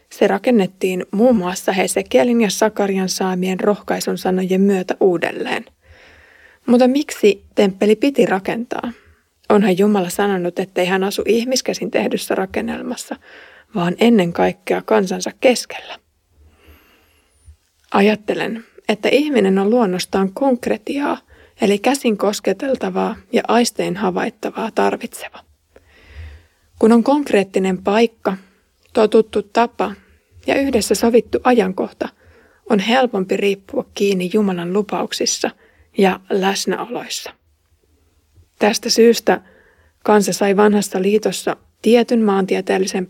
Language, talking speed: Finnish, 100 wpm